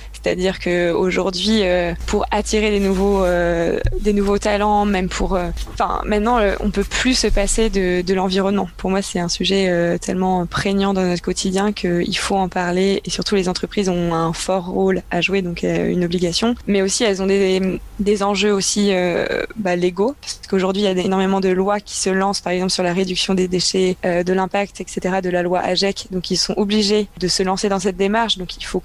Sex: female